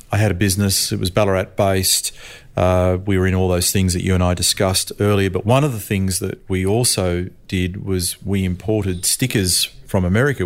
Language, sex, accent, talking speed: English, male, Australian, 195 wpm